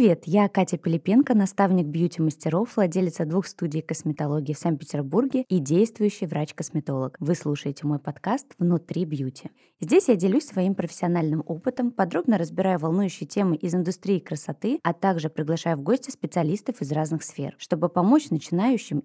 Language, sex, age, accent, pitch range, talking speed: Russian, female, 20-39, native, 160-200 Hz, 145 wpm